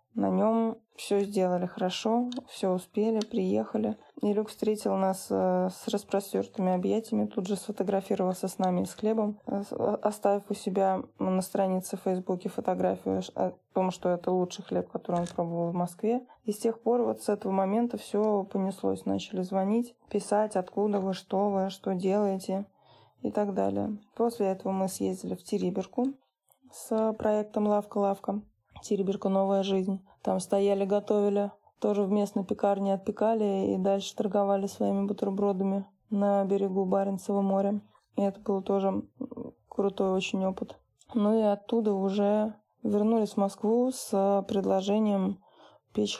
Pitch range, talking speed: 190-215 Hz, 140 wpm